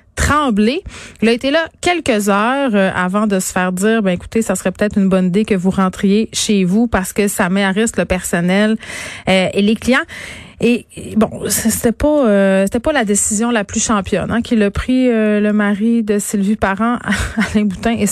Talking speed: 200 wpm